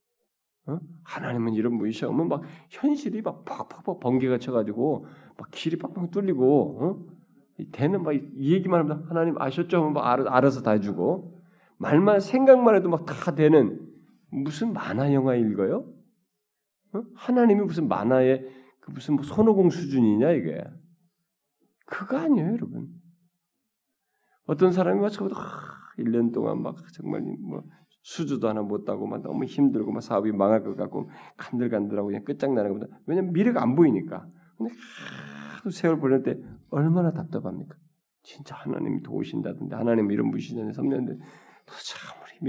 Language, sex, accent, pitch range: Korean, male, native, 130-185 Hz